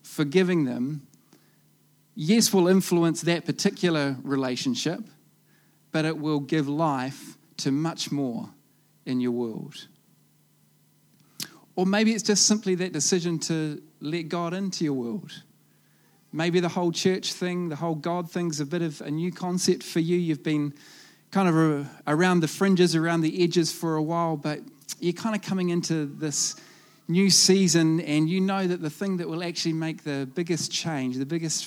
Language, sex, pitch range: English, male, 150-185 Hz